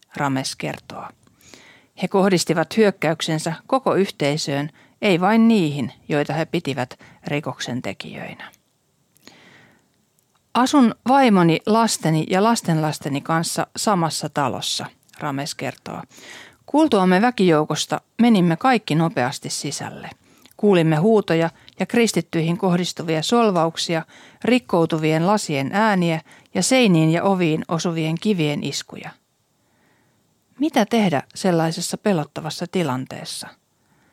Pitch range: 155-205 Hz